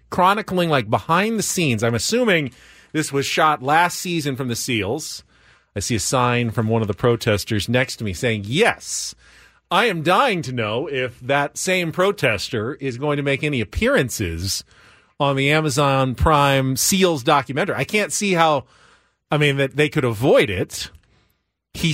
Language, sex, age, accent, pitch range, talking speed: English, male, 40-59, American, 115-160 Hz, 170 wpm